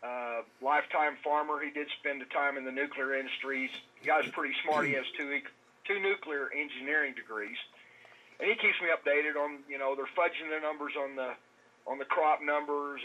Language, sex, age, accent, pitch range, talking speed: English, male, 40-59, American, 130-150 Hz, 190 wpm